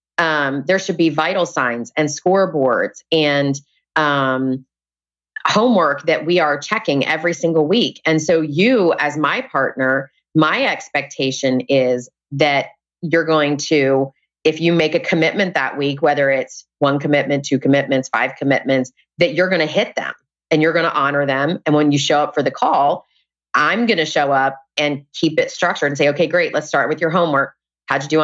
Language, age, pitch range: English, 30-49, 140-165 Hz